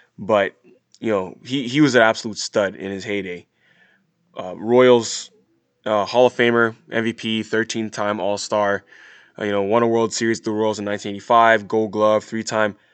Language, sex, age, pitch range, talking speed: English, male, 20-39, 110-130 Hz, 160 wpm